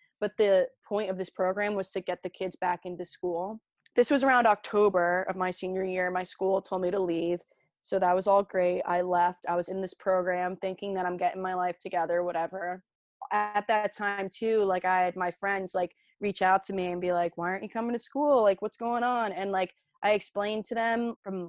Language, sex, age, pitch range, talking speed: English, female, 20-39, 175-205 Hz, 230 wpm